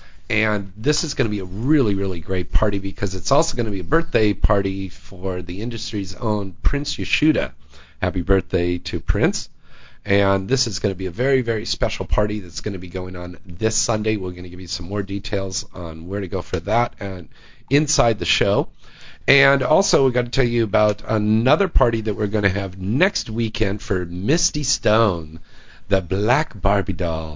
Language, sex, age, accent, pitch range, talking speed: English, male, 50-69, American, 90-115 Hz, 200 wpm